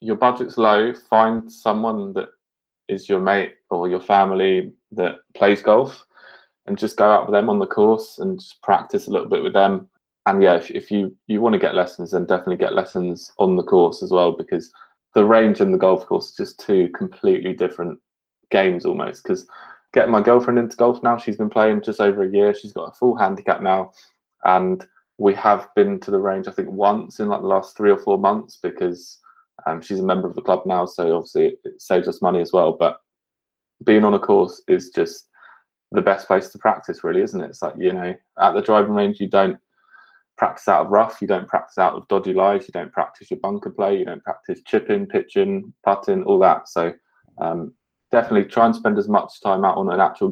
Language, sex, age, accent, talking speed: English, male, 20-39, British, 215 wpm